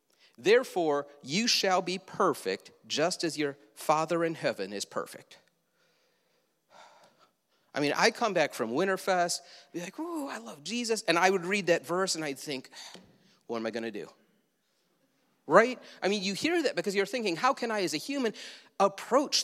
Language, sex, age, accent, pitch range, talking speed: English, male, 40-59, American, 150-205 Hz, 175 wpm